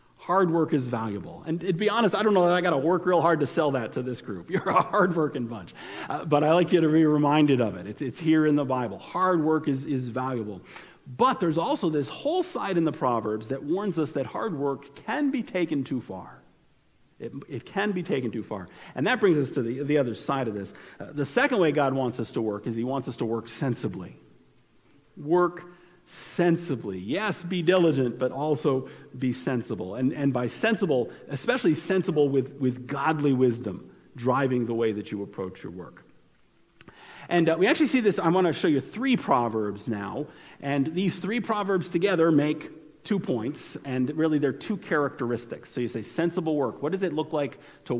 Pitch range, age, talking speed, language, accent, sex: 125-175 Hz, 50-69, 210 wpm, English, American, male